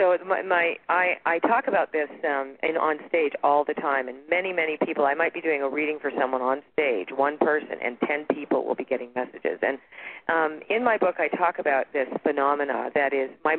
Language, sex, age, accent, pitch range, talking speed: English, female, 40-59, American, 140-185 Hz, 225 wpm